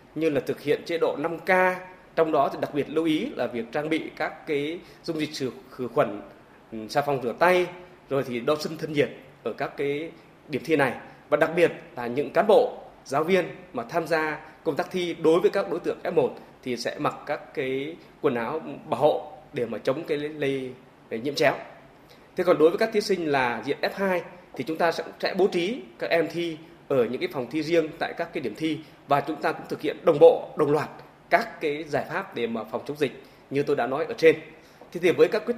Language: Vietnamese